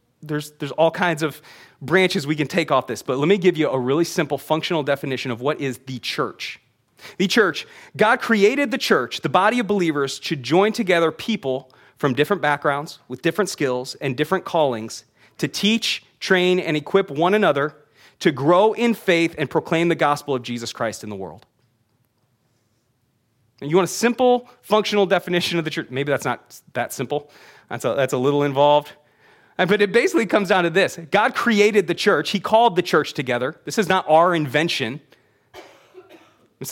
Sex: male